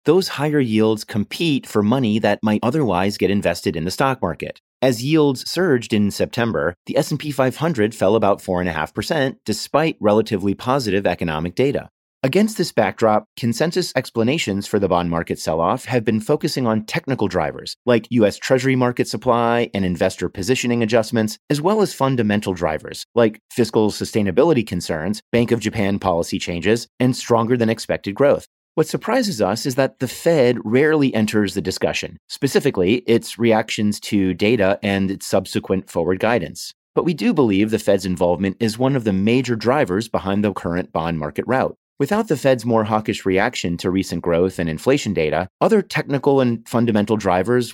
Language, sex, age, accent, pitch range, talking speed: English, male, 30-49, American, 100-130 Hz, 165 wpm